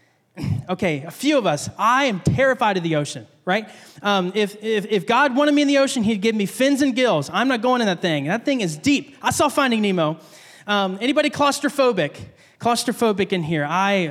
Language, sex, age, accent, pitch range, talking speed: English, male, 20-39, American, 190-270 Hz, 210 wpm